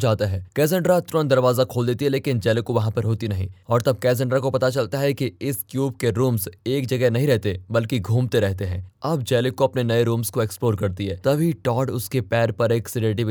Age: 20-39